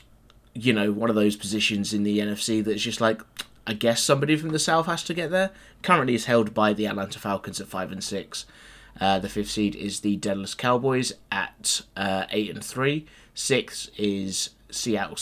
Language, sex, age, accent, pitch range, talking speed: English, male, 20-39, British, 100-120 Hz, 195 wpm